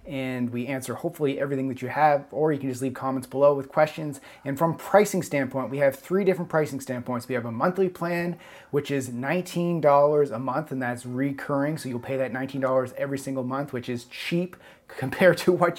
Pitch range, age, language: 135-165 Hz, 30-49, English